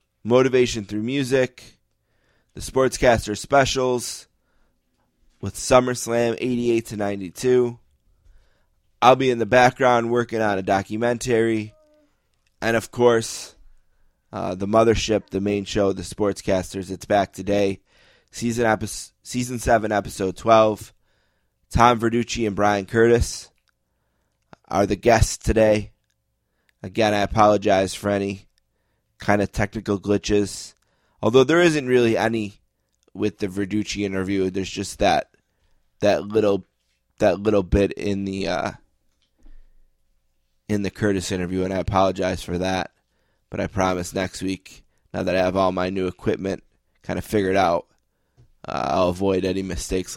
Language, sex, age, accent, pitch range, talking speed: English, male, 20-39, American, 95-115 Hz, 130 wpm